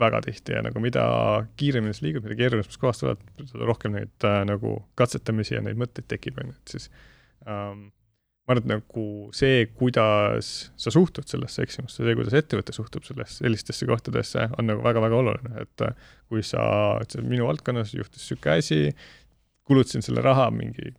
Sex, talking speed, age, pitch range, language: male, 150 wpm, 30-49, 110-135 Hz, English